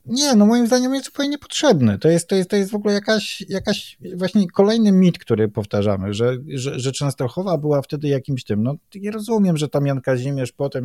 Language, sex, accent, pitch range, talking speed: Polish, male, native, 110-145 Hz, 210 wpm